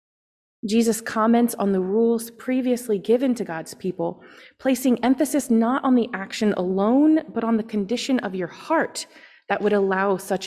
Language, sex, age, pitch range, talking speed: English, female, 30-49, 195-255 Hz, 160 wpm